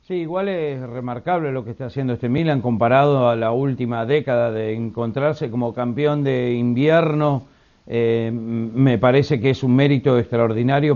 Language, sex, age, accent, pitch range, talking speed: Spanish, male, 60-79, Argentinian, 140-180 Hz, 160 wpm